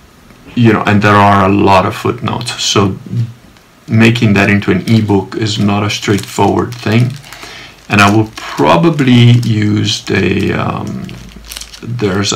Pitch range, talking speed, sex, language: 100-120 Hz, 135 wpm, male, English